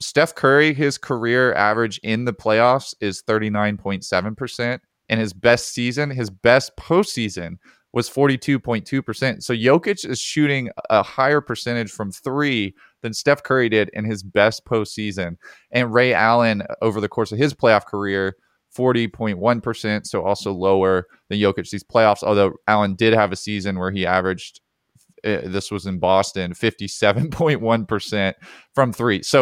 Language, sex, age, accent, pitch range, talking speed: English, male, 20-39, American, 100-120 Hz, 145 wpm